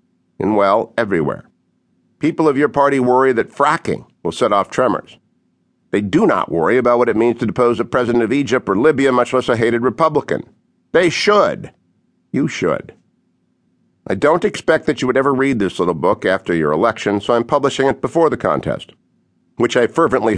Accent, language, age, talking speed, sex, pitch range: American, English, 50-69, 185 wpm, male, 110-135 Hz